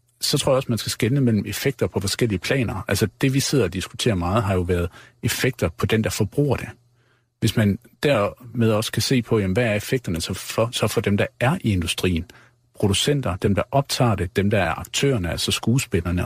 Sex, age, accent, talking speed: male, 60-79, native, 210 wpm